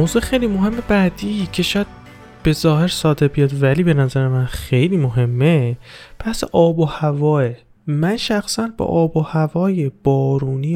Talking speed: 150 wpm